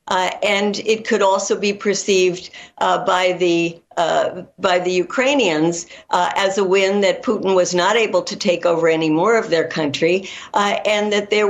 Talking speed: 175 wpm